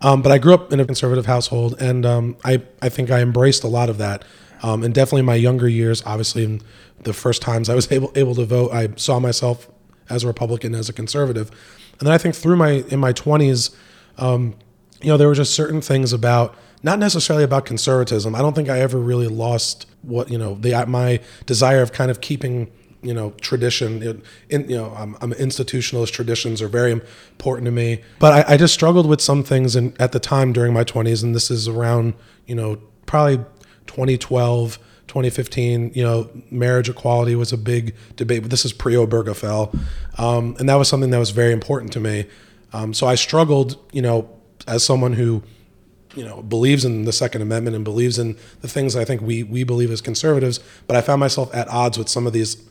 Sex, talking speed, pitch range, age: male, 210 wpm, 115-130 Hz, 20-39